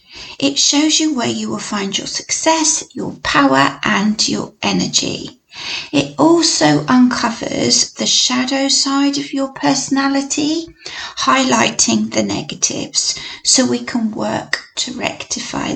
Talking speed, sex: 120 wpm, female